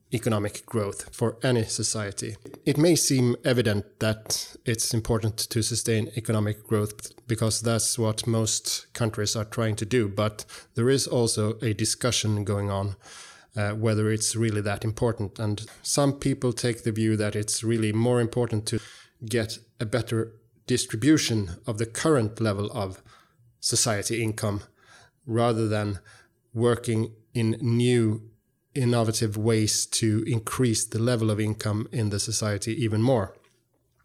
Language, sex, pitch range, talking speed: English, male, 110-120 Hz, 140 wpm